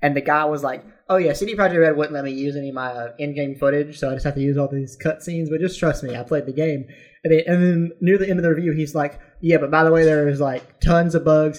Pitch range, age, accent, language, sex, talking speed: 140-175 Hz, 20-39, American, English, male, 305 wpm